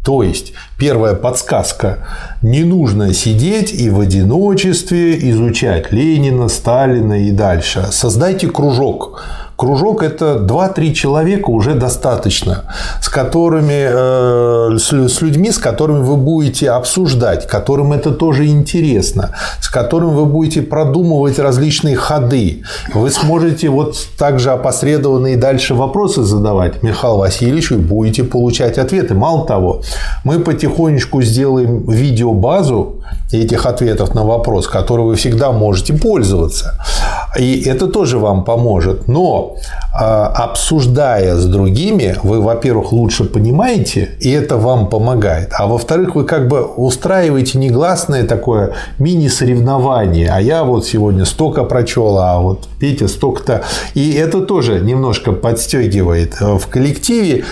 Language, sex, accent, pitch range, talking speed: Russian, male, native, 110-150 Hz, 120 wpm